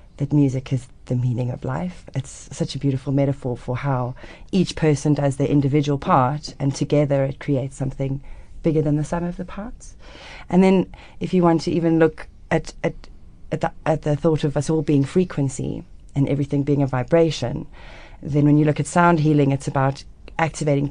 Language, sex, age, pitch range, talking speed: English, female, 30-49, 135-155 Hz, 190 wpm